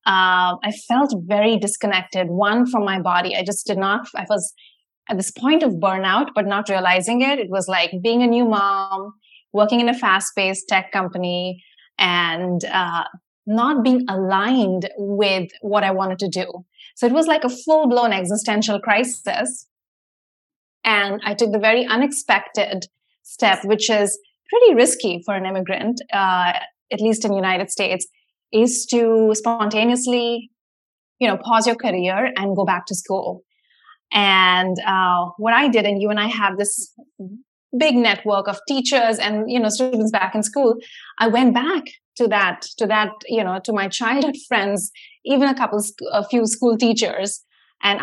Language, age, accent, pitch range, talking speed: English, 20-39, Indian, 190-235 Hz, 165 wpm